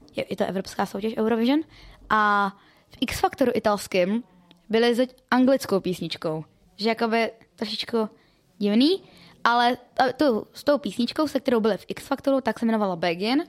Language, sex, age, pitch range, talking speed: Czech, female, 20-39, 210-255 Hz, 145 wpm